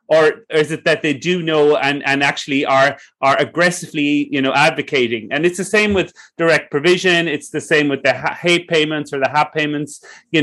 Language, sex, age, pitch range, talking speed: English, male, 30-49, 140-170 Hz, 200 wpm